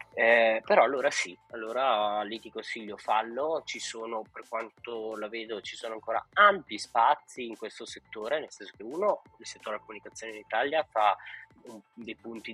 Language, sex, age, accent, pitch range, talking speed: Italian, male, 20-39, native, 105-120 Hz, 170 wpm